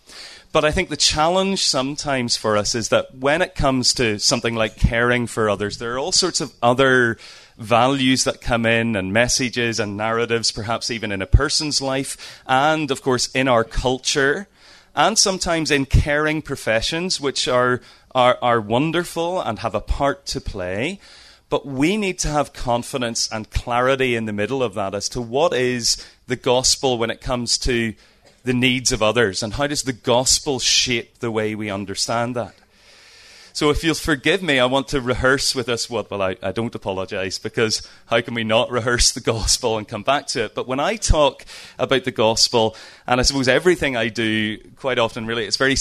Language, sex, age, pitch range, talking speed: English, male, 30-49, 110-135 Hz, 195 wpm